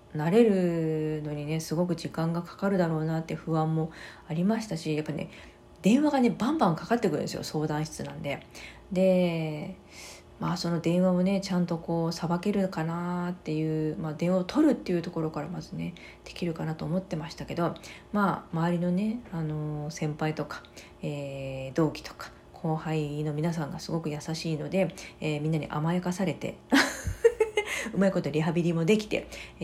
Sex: female